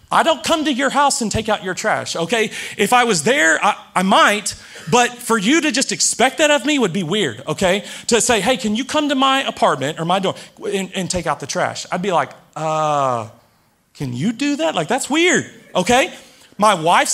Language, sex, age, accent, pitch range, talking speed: English, male, 30-49, American, 205-275 Hz, 225 wpm